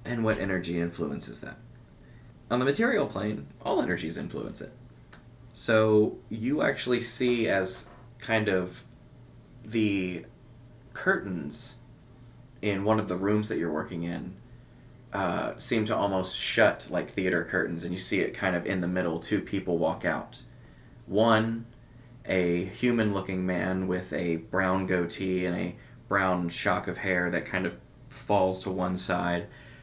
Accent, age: American, 20-39